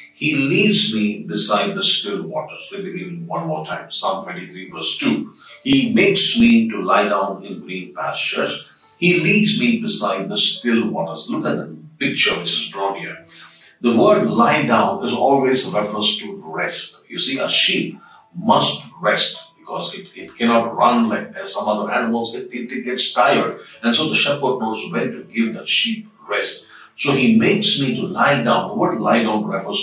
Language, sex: English, male